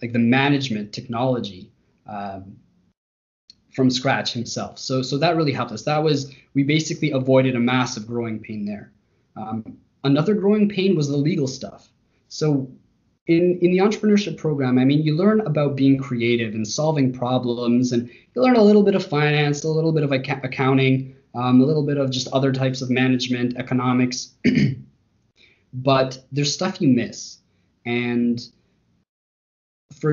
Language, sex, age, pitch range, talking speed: English, male, 20-39, 120-145 Hz, 155 wpm